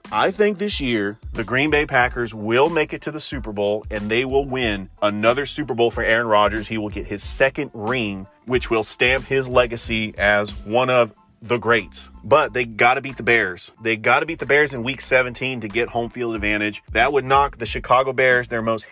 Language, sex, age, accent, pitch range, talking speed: English, male, 30-49, American, 110-135 Hz, 220 wpm